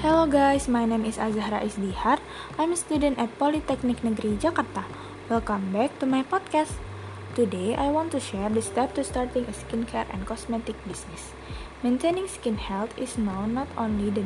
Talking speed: 175 wpm